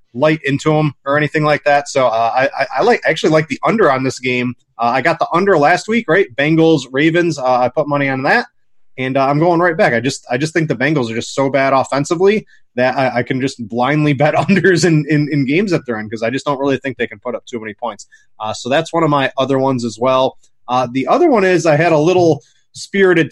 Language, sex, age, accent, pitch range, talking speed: English, male, 30-49, American, 120-150 Hz, 265 wpm